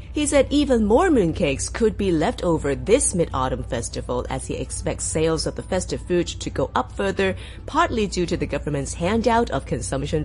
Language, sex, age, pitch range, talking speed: English, female, 30-49, 165-245 Hz, 185 wpm